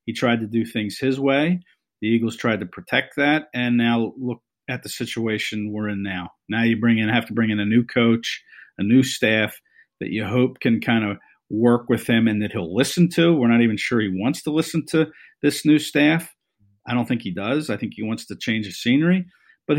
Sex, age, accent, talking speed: male, 50-69, American, 230 wpm